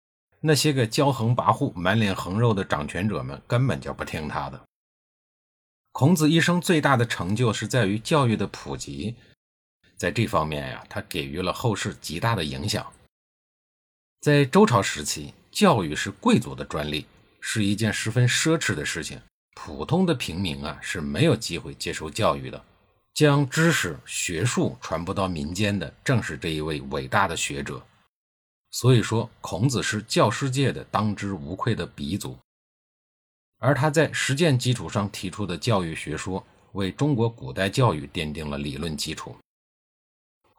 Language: Chinese